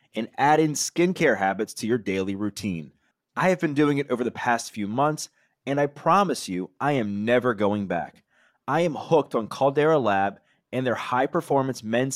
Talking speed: 190 wpm